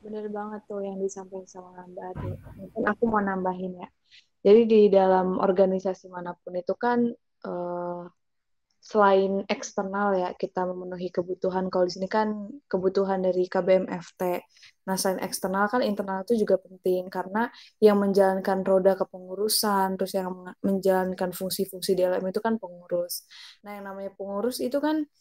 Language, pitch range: Indonesian, 190-215 Hz